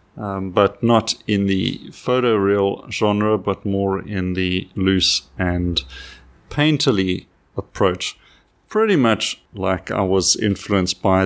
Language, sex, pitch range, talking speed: English, male, 95-125 Hz, 115 wpm